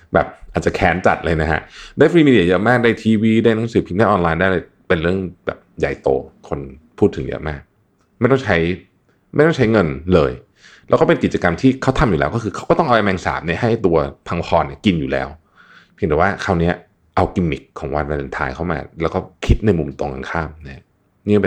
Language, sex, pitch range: Thai, male, 75-115 Hz